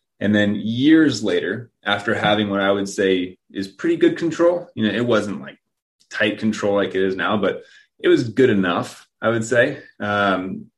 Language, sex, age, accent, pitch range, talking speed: English, male, 30-49, American, 95-110 Hz, 190 wpm